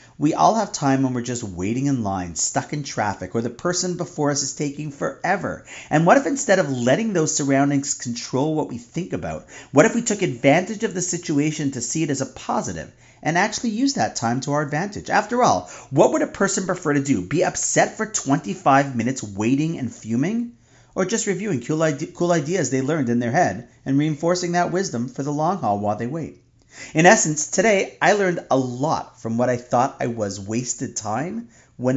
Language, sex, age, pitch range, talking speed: English, male, 40-59, 120-175 Hz, 205 wpm